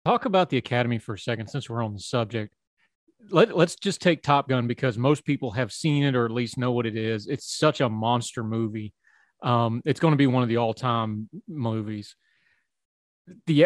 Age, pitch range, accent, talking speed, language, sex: 30-49, 120-155 Hz, American, 200 wpm, English, male